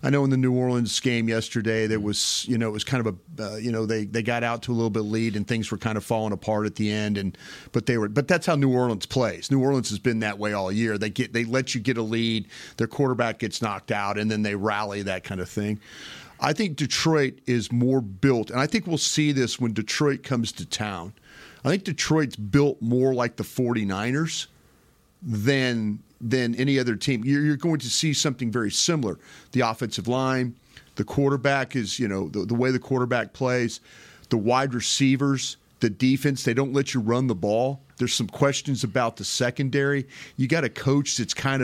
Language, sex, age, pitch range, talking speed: English, male, 40-59, 110-135 Hz, 220 wpm